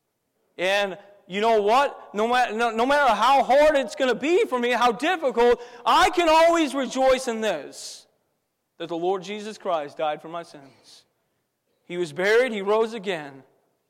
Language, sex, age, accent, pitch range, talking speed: English, male, 40-59, American, 170-250 Hz, 175 wpm